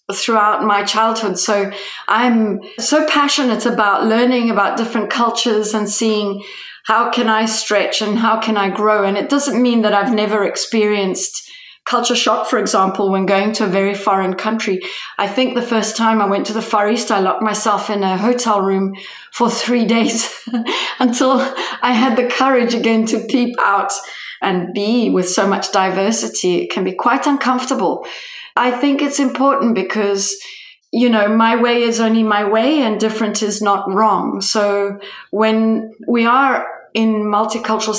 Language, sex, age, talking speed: English, female, 30-49, 170 wpm